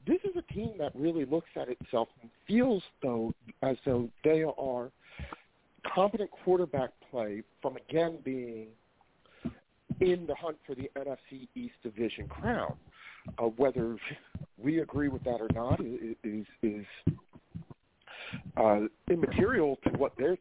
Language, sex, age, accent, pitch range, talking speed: English, male, 50-69, American, 115-155 Hz, 135 wpm